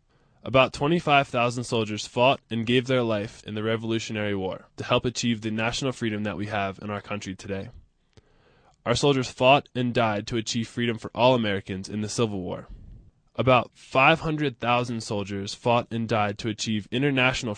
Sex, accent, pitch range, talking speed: male, American, 105-130 Hz, 165 wpm